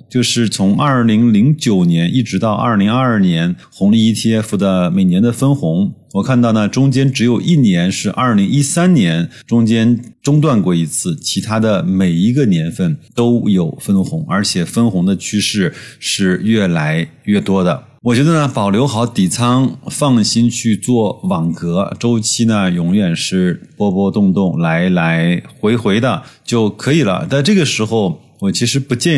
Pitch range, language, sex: 95-135 Hz, Chinese, male